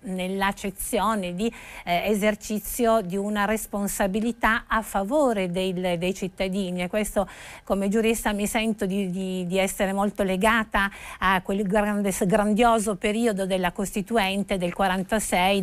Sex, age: female, 50-69